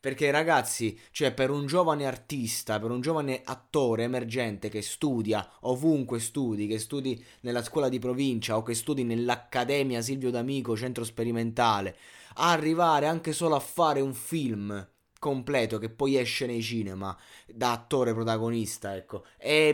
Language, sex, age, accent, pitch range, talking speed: Italian, male, 20-39, native, 115-150 Hz, 145 wpm